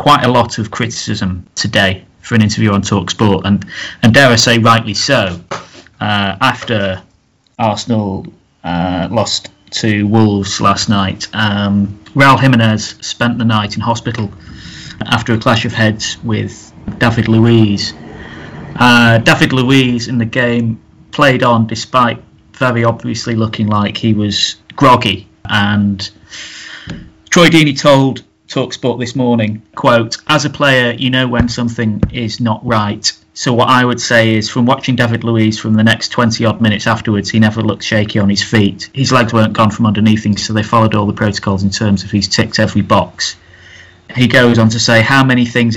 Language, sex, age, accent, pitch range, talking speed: English, male, 30-49, British, 105-120 Hz, 170 wpm